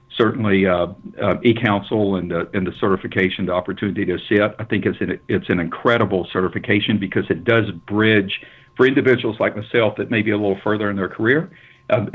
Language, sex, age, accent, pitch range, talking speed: English, male, 50-69, American, 90-105 Hz, 195 wpm